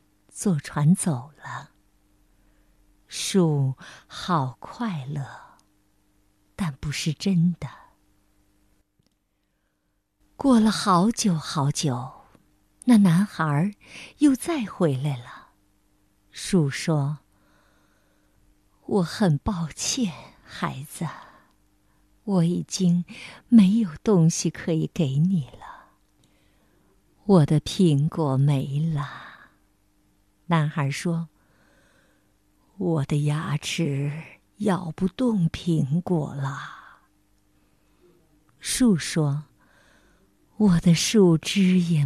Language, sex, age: Chinese, female, 50-69